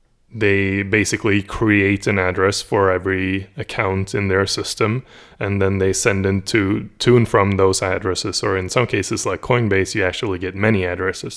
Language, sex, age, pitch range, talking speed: English, male, 20-39, 95-105 Hz, 170 wpm